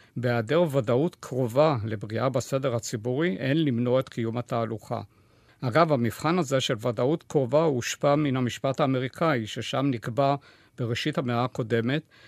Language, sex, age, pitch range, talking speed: Hebrew, male, 50-69, 120-150 Hz, 125 wpm